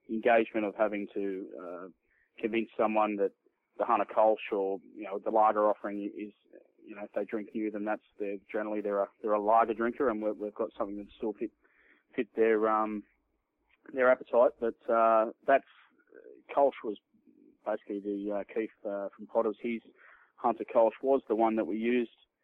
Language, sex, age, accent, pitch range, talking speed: English, male, 20-39, Australian, 100-115 Hz, 180 wpm